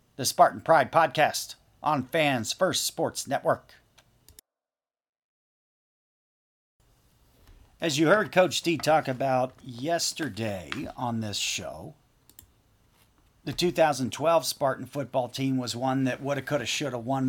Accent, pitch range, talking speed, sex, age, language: American, 120-145 Hz, 110 wpm, male, 40-59, English